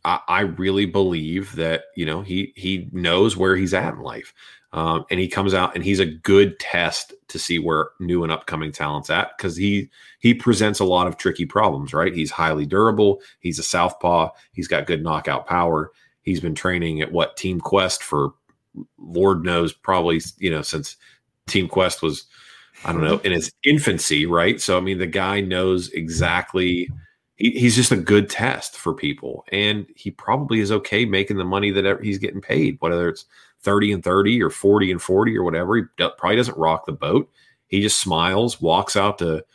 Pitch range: 85-105 Hz